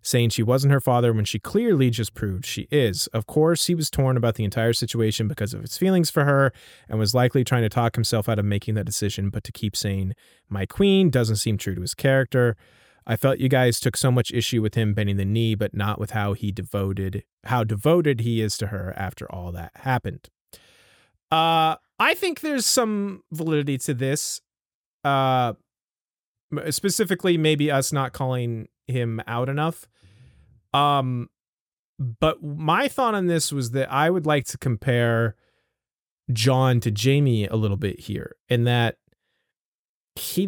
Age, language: 30-49, English